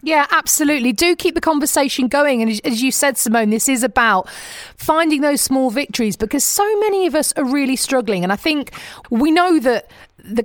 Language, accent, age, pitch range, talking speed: English, British, 40-59, 215-290 Hz, 195 wpm